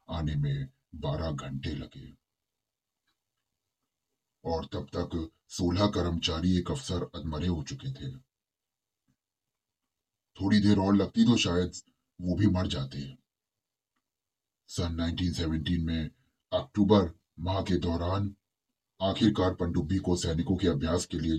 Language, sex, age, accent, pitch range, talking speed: Hindi, male, 30-49, native, 80-100 Hz, 105 wpm